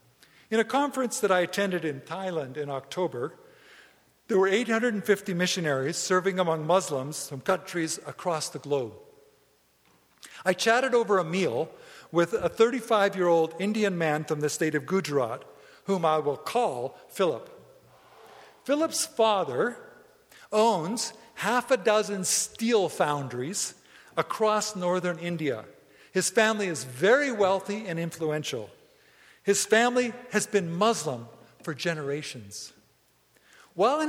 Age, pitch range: 50-69, 160-225 Hz